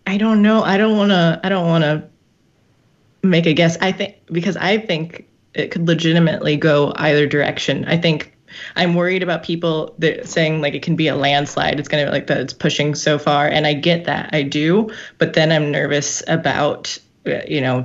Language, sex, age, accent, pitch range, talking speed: English, female, 20-39, American, 145-170 Hz, 205 wpm